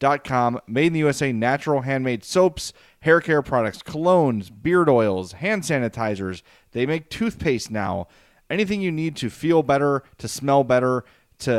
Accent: American